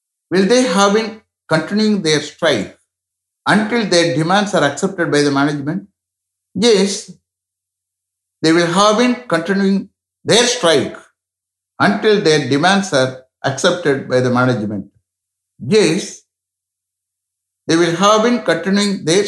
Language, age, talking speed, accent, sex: English, 60-79, 120 wpm, Indian, male